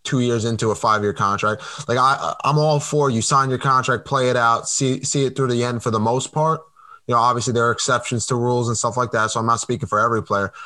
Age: 20-39